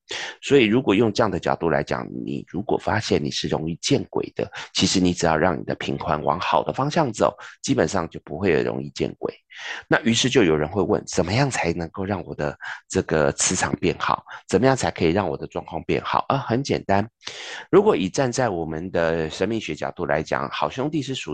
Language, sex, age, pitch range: Chinese, male, 30-49, 75-100 Hz